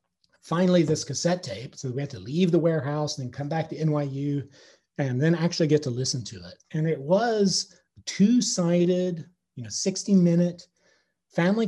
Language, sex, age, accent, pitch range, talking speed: English, male, 40-59, American, 140-175 Hz, 170 wpm